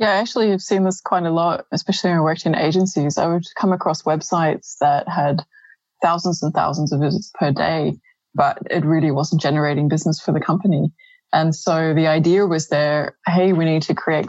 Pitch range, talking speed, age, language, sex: 160-190 Hz, 200 wpm, 20-39, English, female